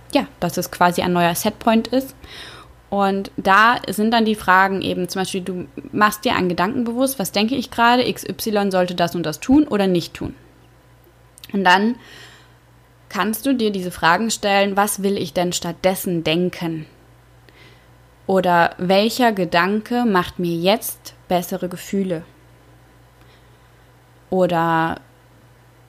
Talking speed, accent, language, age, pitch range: 135 wpm, German, German, 20-39, 170-200 Hz